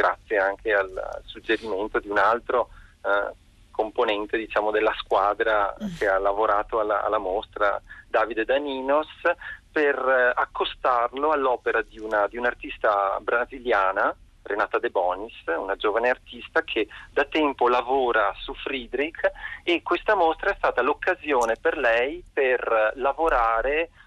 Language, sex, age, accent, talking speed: Italian, male, 40-59, native, 125 wpm